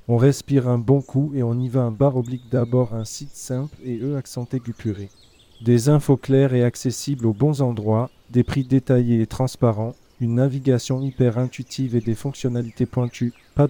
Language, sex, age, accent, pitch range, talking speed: French, male, 40-59, French, 115-135 Hz, 185 wpm